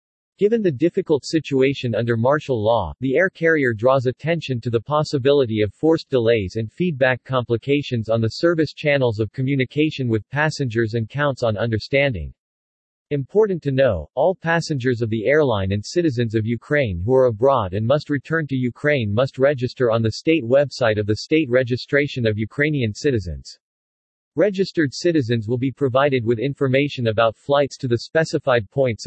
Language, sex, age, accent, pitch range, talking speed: English, male, 40-59, American, 115-145 Hz, 165 wpm